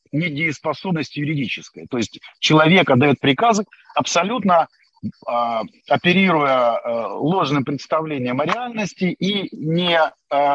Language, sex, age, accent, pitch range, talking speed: Ukrainian, male, 40-59, native, 135-180 Hz, 100 wpm